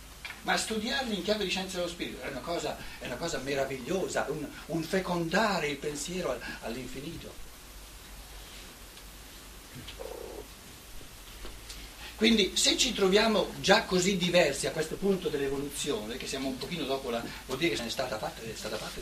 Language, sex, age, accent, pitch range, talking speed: Italian, male, 60-79, native, 130-195 Hz, 150 wpm